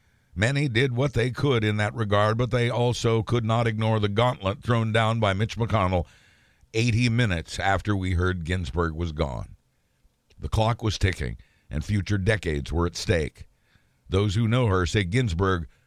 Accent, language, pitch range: American, English, 95-125 Hz